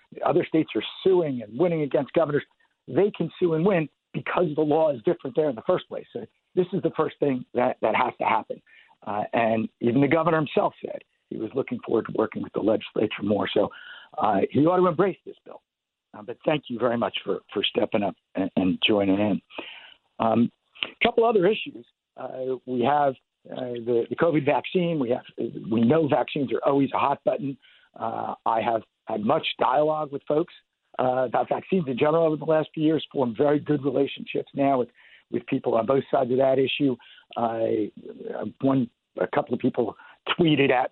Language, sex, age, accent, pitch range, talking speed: English, male, 60-79, American, 120-165 Hz, 195 wpm